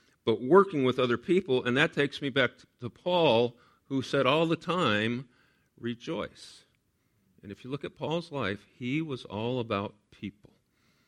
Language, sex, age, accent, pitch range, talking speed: English, male, 50-69, American, 105-150 Hz, 160 wpm